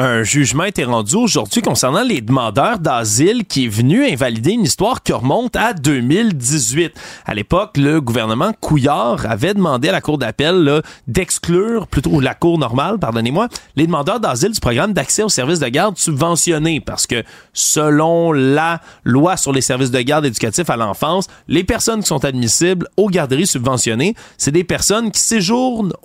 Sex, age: male, 30-49